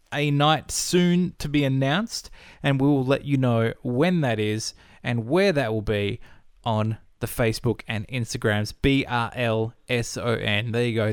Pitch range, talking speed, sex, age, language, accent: 115-150 Hz, 155 wpm, male, 20-39, English, Australian